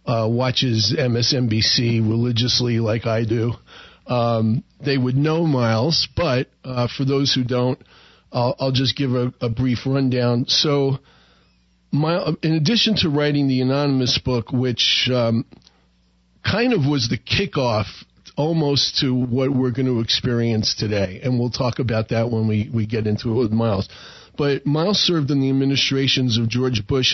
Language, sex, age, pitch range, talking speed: English, male, 40-59, 115-140 Hz, 160 wpm